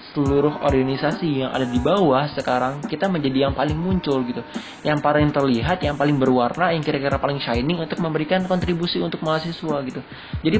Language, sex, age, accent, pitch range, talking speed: Indonesian, male, 20-39, native, 135-165 Hz, 170 wpm